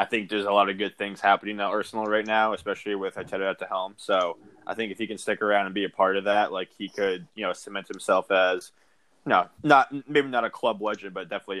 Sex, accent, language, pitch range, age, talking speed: male, American, English, 95-110 Hz, 20-39, 270 wpm